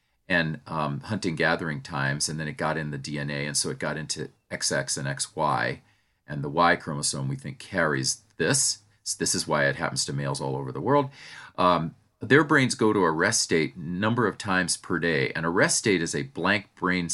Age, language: 40-59, English